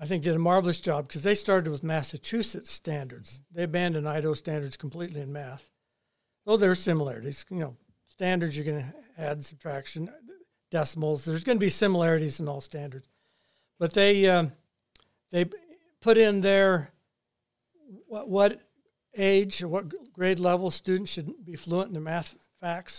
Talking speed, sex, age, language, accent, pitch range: 160 wpm, male, 60-79, English, American, 150-185 Hz